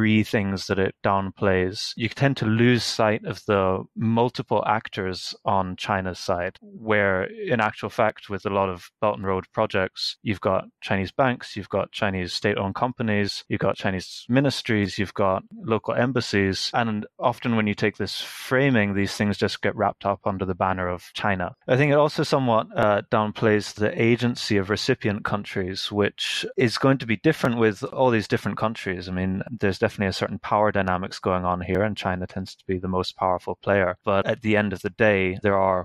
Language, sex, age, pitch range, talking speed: English, male, 20-39, 95-110 Hz, 195 wpm